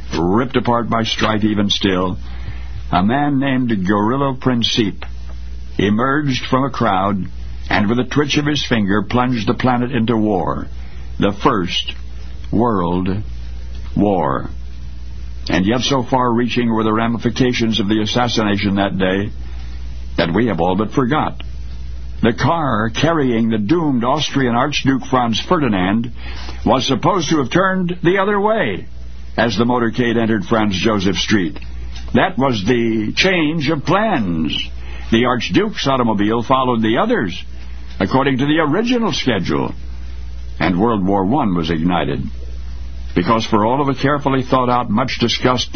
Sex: male